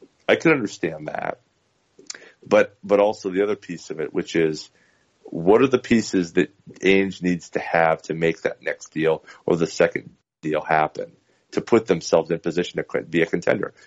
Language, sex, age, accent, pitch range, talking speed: English, male, 40-59, American, 85-115 Hz, 185 wpm